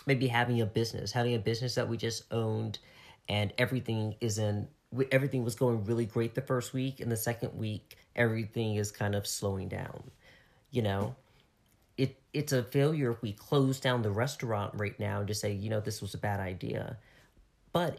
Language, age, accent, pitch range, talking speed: English, 40-59, American, 105-130 Hz, 195 wpm